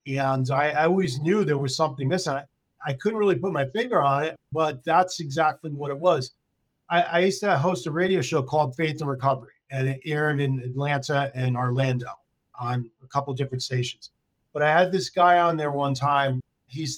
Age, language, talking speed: 40-59, English, 210 wpm